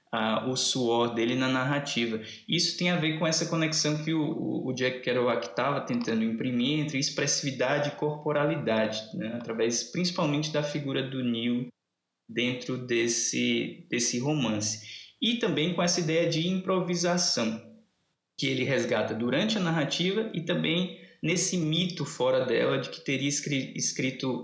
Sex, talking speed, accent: male, 145 wpm, Brazilian